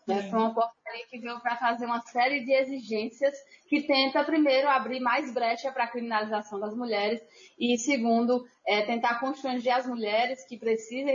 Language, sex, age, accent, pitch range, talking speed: Portuguese, female, 20-39, Brazilian, 230-280 Hz, 165 wpm